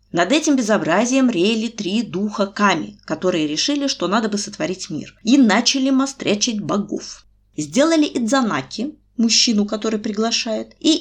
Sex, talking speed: female, 130 wpm